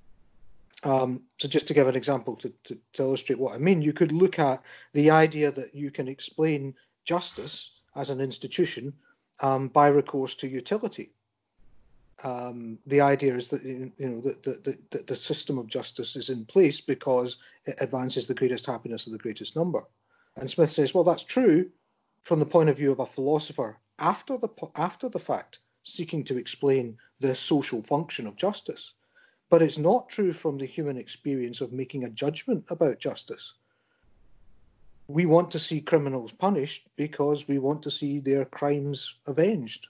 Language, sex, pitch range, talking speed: English, male, 130-155 Hz, 175 wpm